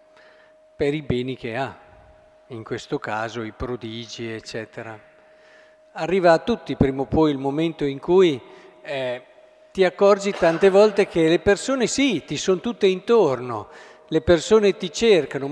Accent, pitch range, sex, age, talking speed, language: native, 140-195 Hz, male, 50-69, 145 wpm, Italian